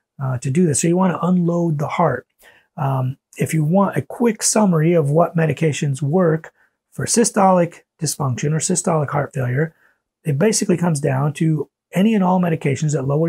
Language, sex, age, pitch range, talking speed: English, male, 30-49, 135-160 Hz, 180 wpm